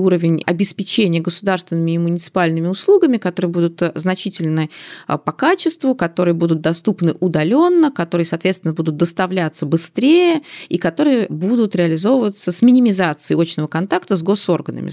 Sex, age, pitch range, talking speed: female, 20-39, 170-225 Hz, 120 wpm